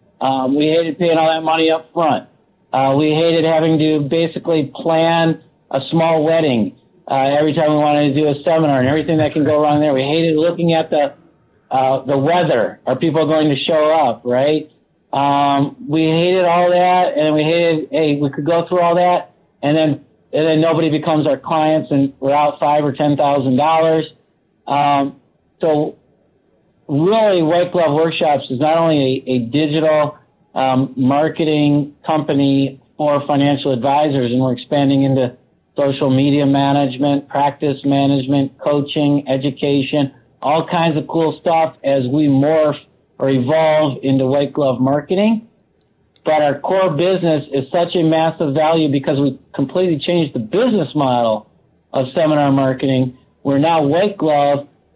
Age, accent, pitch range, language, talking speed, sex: 50-69, American, 140-160 Hz, English, 160 wpm, male